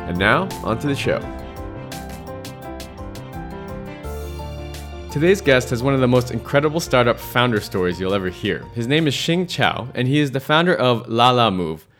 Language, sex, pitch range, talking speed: English, male, 105-140 Hz, 165 wpm